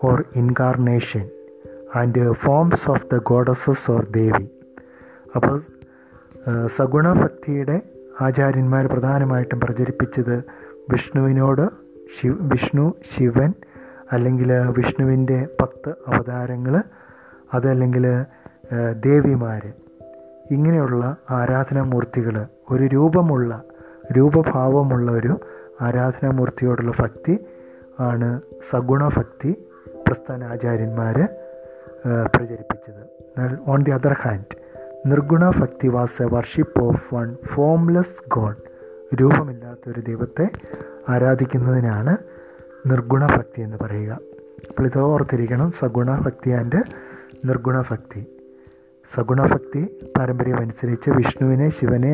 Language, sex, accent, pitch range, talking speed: English, male, Indian, 120-135 Hz, 110 wpm